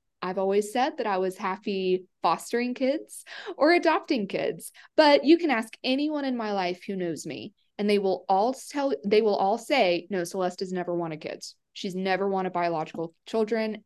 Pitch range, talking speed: 185-245 Hz, 185 wpm